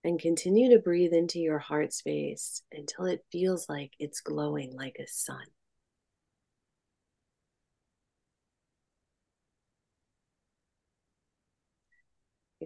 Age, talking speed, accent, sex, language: 40-59, 85 wpm, American, female, English